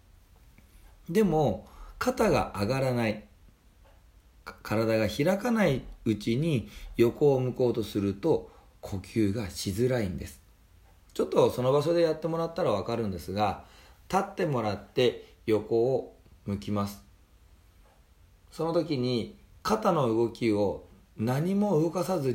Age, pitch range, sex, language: 40-59, 90-145 Hz, male, Japanese